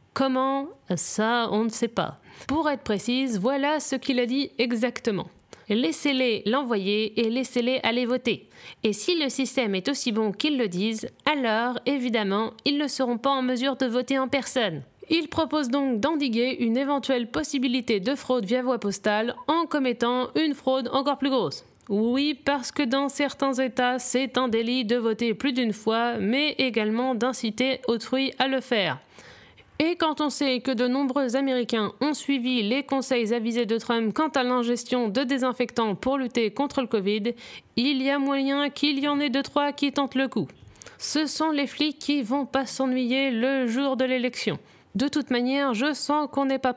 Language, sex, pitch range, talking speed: French, female, 230-275 Hz, 185 wpm